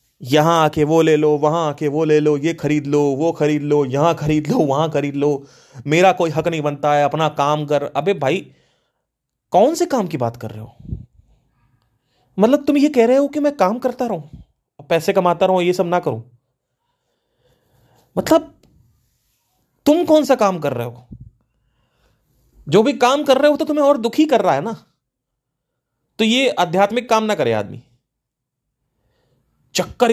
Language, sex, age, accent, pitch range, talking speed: Hindi, male, 30-49, native, 125-175 Hz, 175 wpm